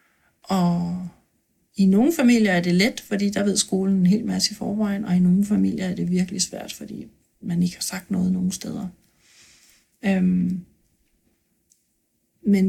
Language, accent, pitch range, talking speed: Danish, native, 180-210 Hz, 160 wpm